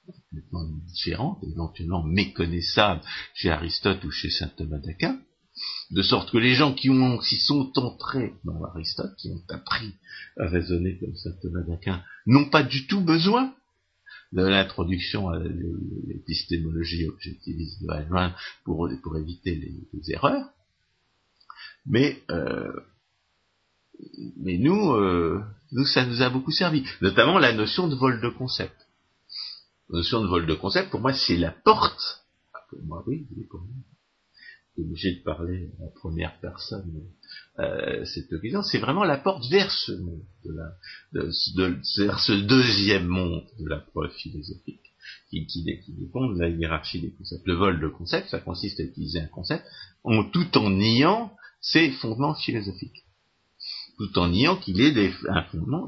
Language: French